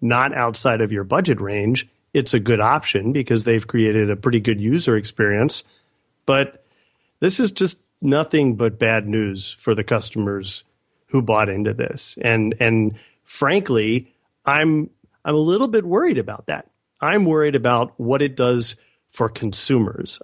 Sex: male